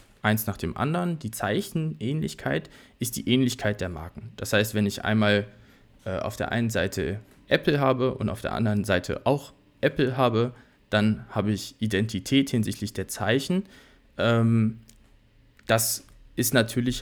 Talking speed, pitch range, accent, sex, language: 150 wpm, 105-135 Hz, German, male, German